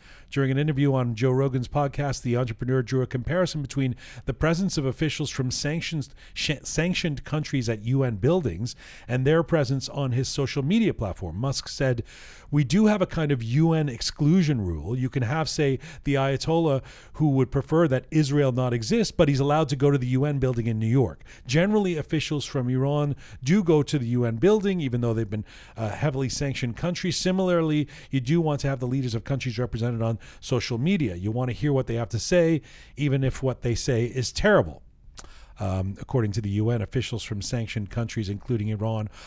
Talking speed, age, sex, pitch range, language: 195 wpm, 40-59, male, 115-150 Hz, English